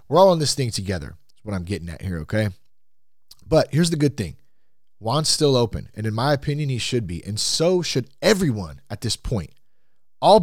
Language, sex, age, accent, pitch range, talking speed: English, male, 30-49, American, 105-160 Hz, 205 wpm